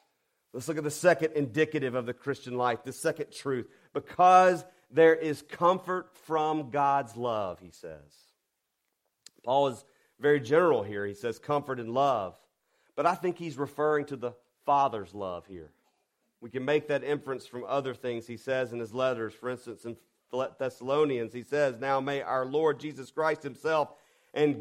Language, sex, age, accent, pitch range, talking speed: English, male, 40-59, American, 110-150 Hz, 170 wpm